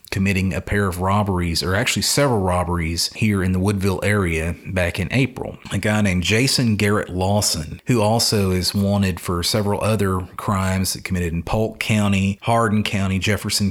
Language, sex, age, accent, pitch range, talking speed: English, male, 40-59, American, 95-105 Hz, 165 wpm